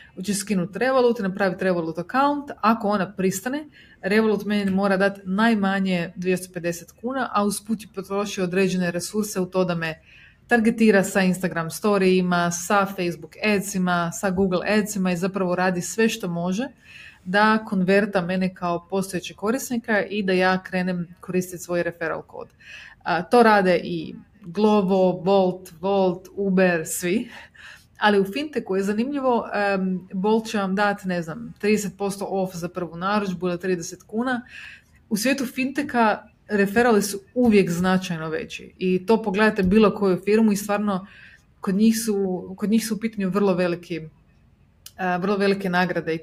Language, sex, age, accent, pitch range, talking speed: Croatian, female, 30-49, native, 180-210 Hz, 150 wpm